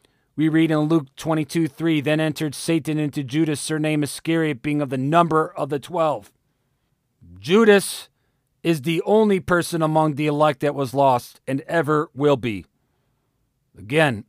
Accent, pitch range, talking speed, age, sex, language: American, 135-165 Hz, 150 wpm, 40-59, male, English